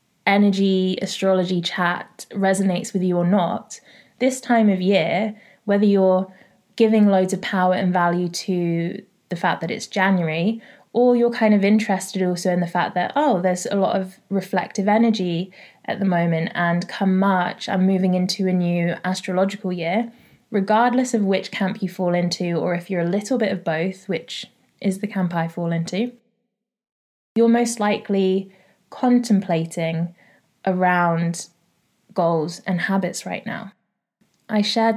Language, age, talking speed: English, 20-39, 155 wpm